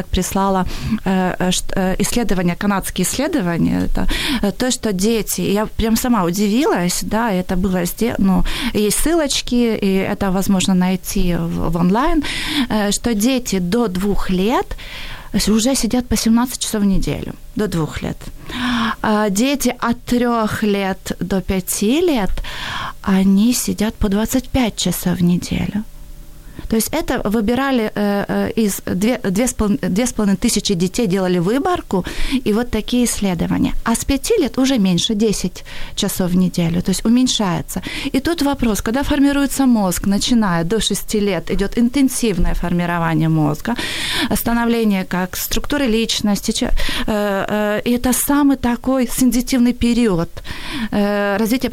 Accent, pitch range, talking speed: native, 190-245 Hz, 120 wpm